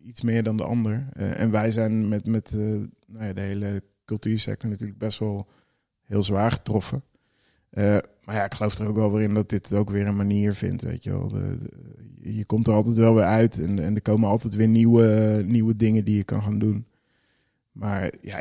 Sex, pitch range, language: male, 110-125 Hz, Dutch